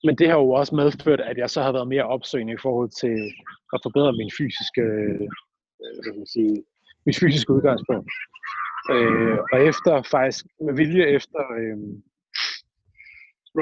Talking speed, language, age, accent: 145 wpm, Danish, 30-49, native